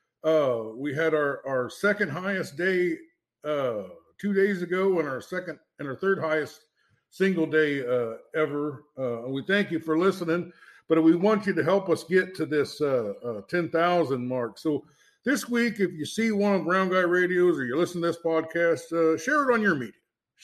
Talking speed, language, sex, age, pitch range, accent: 195 wpm, English, male, 60-79, 145-180 Hz, American